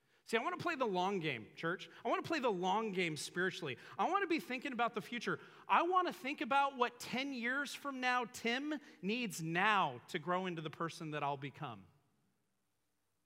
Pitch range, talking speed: 145-215 Hz, 210 wpm